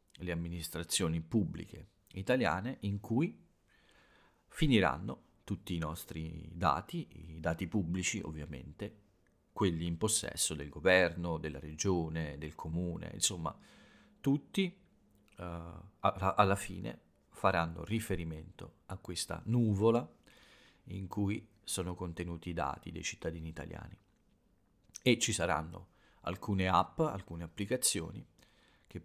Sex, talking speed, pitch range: male, 105 wpm, 85-105 Hz